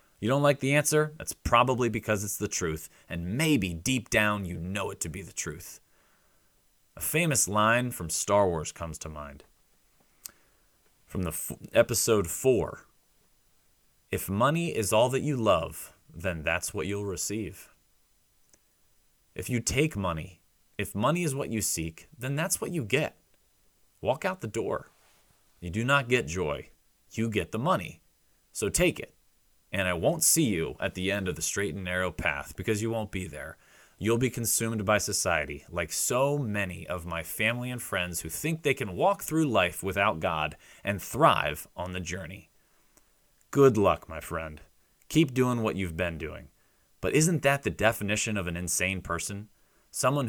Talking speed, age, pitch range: 175 wpm, 30-49, 85-115 Hz